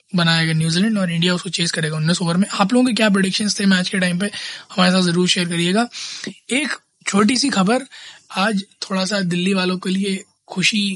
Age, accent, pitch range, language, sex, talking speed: 20-39, native, 170-200 Hz, Hindi, male, 205 wpm